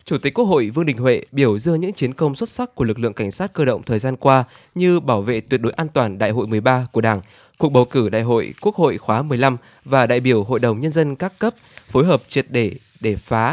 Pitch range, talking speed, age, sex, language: 115-155 Hz, 265 wpm, 20-39, male, Vietnamese